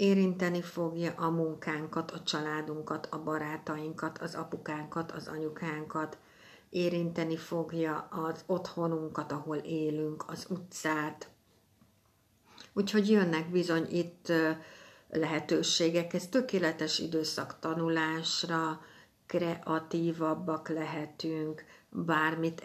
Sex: female